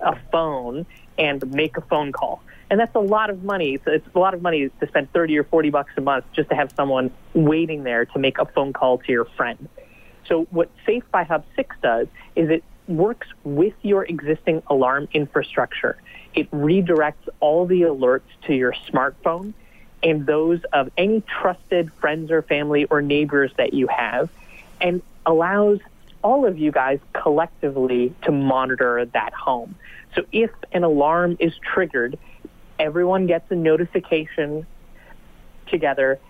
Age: 30-49